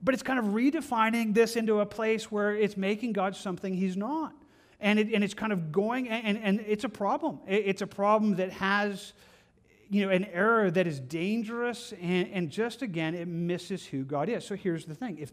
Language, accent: English, American